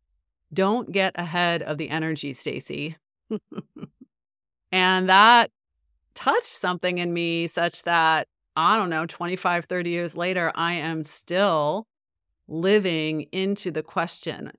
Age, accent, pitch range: 30-49, American, 150-185 Hz